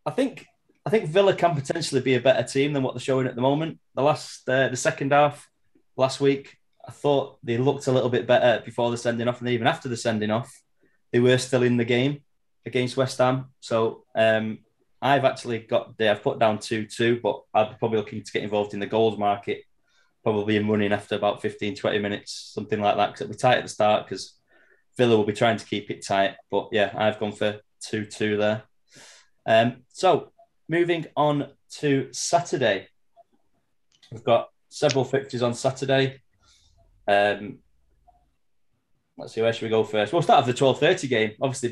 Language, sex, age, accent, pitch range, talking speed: English, male, 20-39, British, 110-140 Hz, 195 wpm